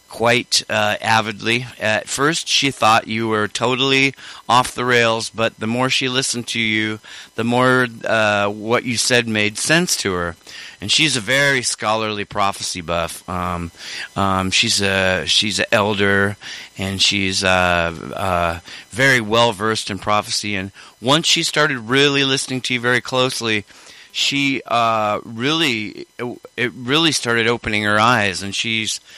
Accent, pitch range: American, 105-135 Hz